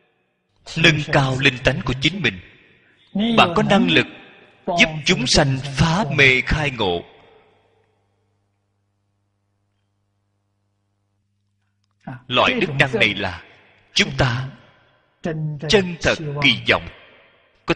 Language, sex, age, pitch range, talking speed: Vietnamese, male, 30-49, 110-160 Hz, 100 wpm